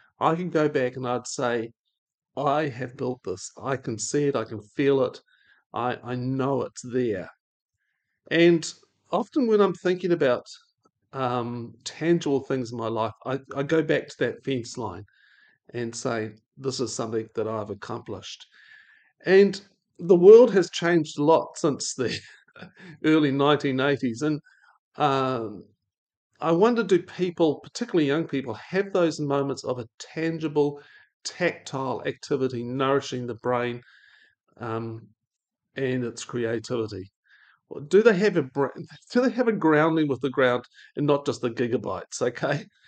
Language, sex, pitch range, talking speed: English, male, 125-170 Hz, 145 wpm